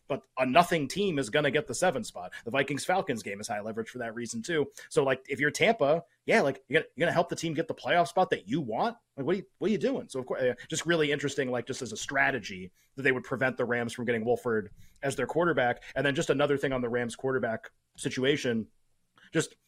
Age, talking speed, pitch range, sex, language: 30-49, 245 wpm, 120-155 Hz, male, English